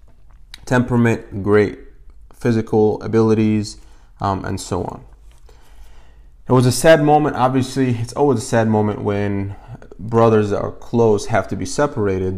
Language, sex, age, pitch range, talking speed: English, male, 20-39, 95-115 Hz, 135 wpm